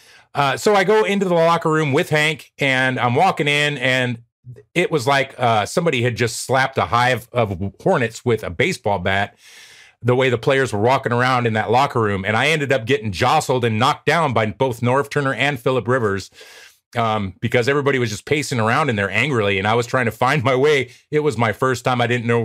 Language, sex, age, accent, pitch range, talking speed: English, male, 30-49, American, 110-135 Hz, 225 wpm